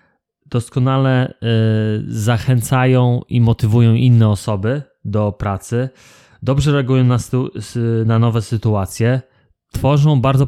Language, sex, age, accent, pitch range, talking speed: Polish, male, 20-39, native, 110-130 Hz, 85 wpm